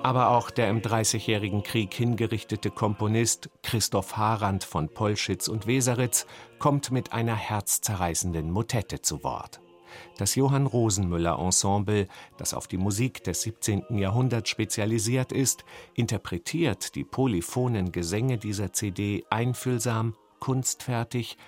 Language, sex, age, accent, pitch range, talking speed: German, male, 50-69, German, 95-120 Hz, 110 wpm